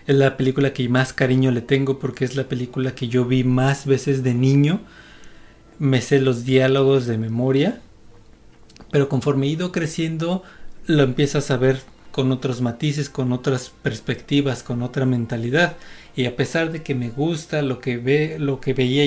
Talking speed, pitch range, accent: 175 wpm, 130-145 Hz, Mexican